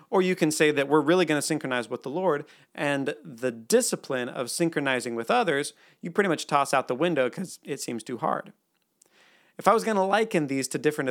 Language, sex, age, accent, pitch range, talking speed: English, male, 30-49, American, 130-180 Hz, 220 wpm